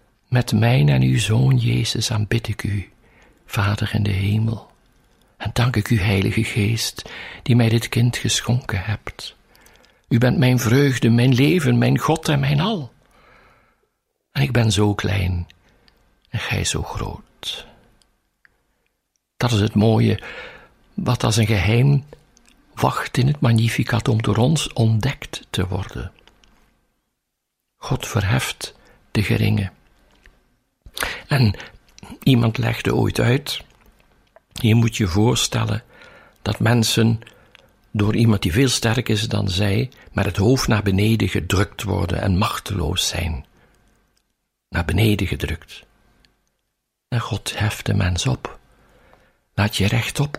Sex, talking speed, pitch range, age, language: male, 130 wpm, 105-125 Hz, 60-79, Dutch